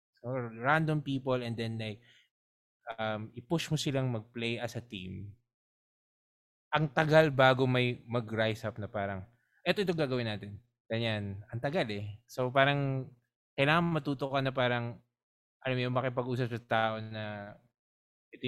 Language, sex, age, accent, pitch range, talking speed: Filipino, male, 20-39, native, 105-130 Hz, 145 wpm